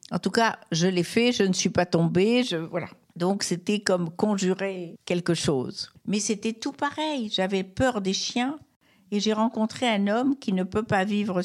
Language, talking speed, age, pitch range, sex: French, 195 wpm, 60-79, 150-220 Hz, female